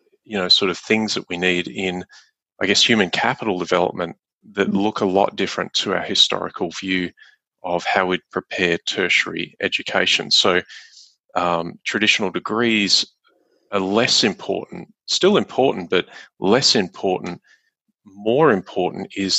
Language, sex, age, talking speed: English, male, 30-49, 135 wpm